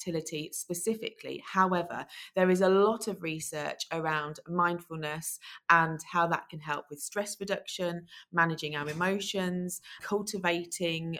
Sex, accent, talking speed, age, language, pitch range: female, British, 125 wpm, 30-49, English, 160-185 Hz